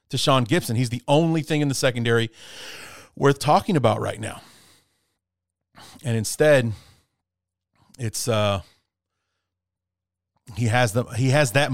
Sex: male